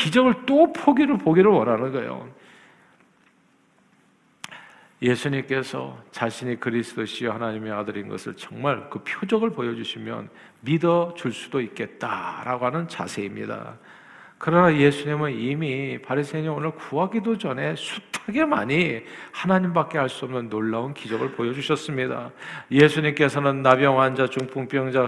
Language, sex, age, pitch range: Korean, male, 50-69, 135-190 Hz